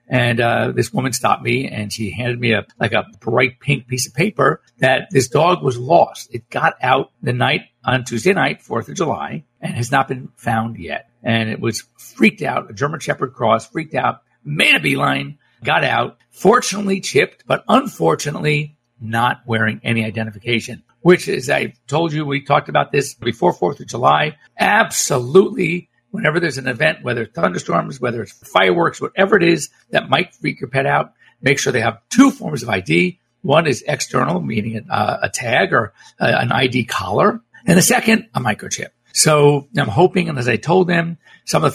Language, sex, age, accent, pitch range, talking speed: English, male, 50-69, American, 120-175 Hz, 190 wpm